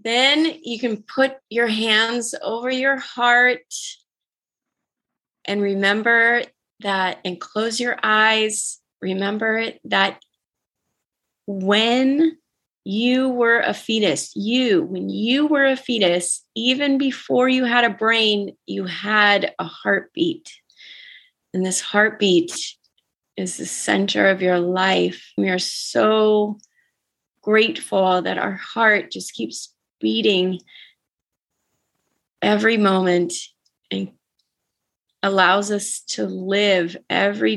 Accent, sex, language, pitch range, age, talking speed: American, female, English, 180-235 Hz, 30-49, 105 wpm